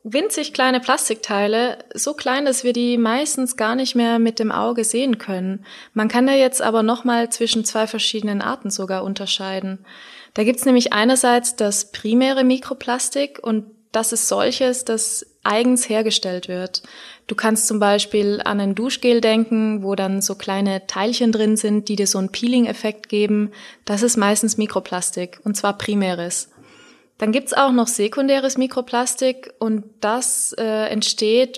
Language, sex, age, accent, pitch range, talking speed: German, female, 20-39, German, 205-245 Hz, 160 wpm